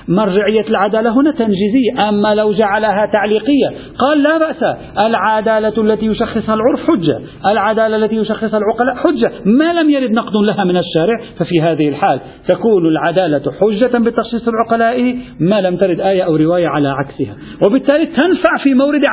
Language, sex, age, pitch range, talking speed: Arabic, male, 50-69, 165-230 Hz, 150 wpm